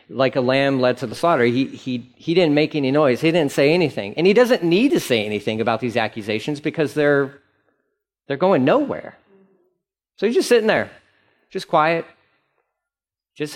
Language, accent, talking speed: English, American, 180 wpm